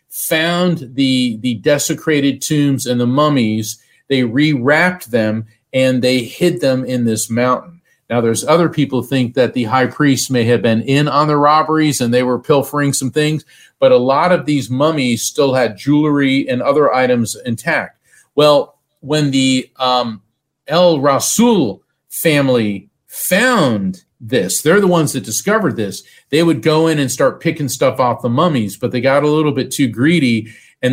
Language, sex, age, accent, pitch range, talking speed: English, male, 40-59, American, 120-150 Hz, 170 wpm